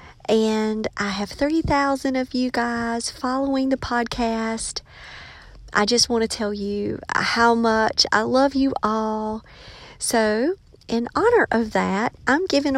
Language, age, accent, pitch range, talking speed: English, 40-59, American, 220-275 Hz, 135 wpm